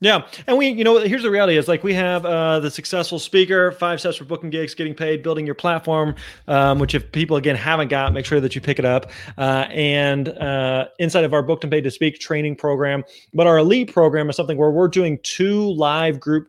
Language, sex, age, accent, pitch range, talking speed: English, male, 30-49, American, 130-155 Hz, 235 wpm